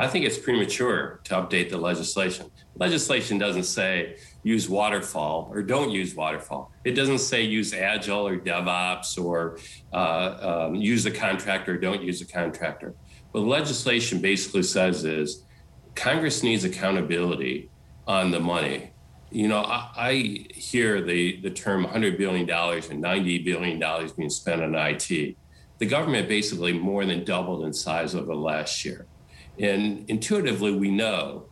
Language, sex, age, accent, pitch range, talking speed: English, male, 50-69, American, 85-105 Hz, 150 wpm